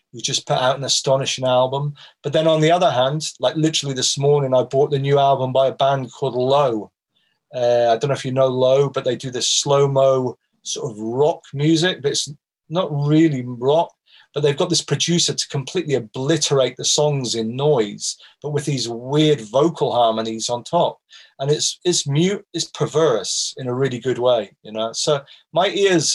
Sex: male